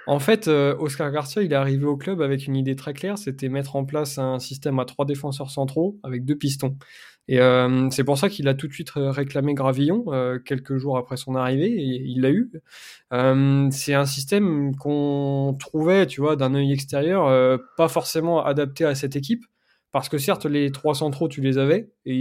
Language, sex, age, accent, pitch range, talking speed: French, male, 20-39, French, 135-150 Hz, 210 wpm